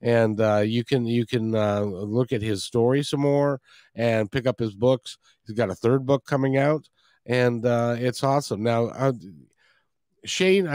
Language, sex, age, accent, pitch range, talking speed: English, male, 50-69, American, 115-150 Hz, 180 wpm